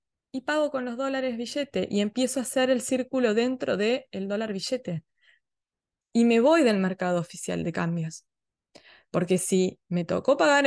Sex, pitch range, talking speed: female, 185-245 Hz, 170 wpm